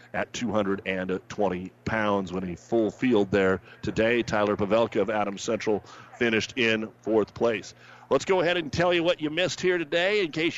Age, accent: 50-69, American